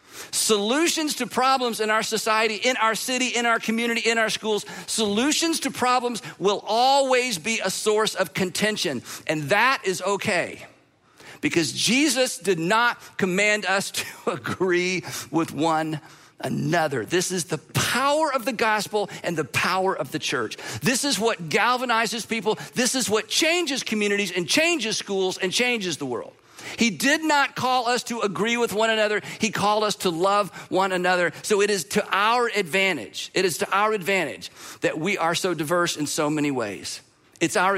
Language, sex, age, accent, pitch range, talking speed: English, male, 50-69, American, 175-230 Hz, 175 wpm